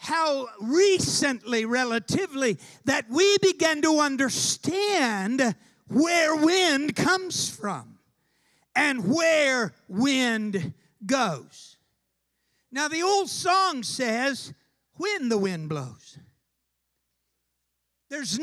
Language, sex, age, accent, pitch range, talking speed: English, male, 50-69, American, 220-340 Hz, 85 wpm